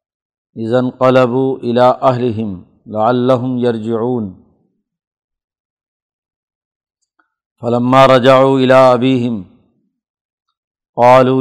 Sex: male